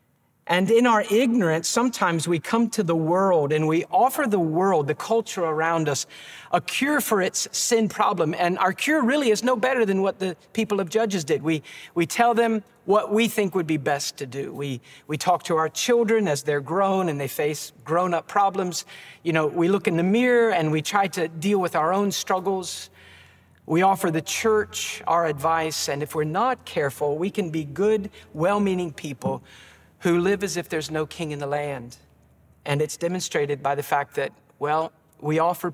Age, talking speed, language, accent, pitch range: 50-69, 200 wpm, English, American, 145-200 Hz